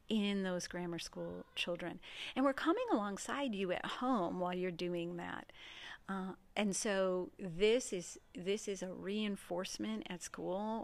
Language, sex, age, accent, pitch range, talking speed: English, female, 50-69, American, 180-220 Hz, 150 wpm